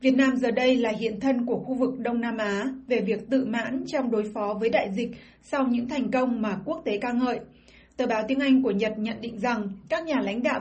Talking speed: 255 wpm